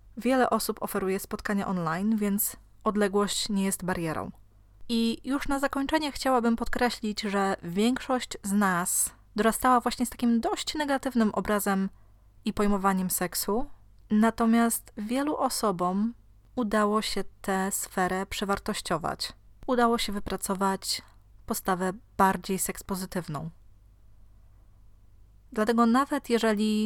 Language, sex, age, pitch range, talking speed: Polish, female, 20-39, 180-225 Hz, 105 wpm